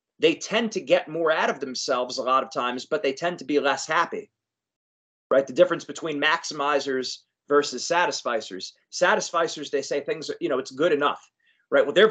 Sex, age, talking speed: male, 30-49, 190 wpm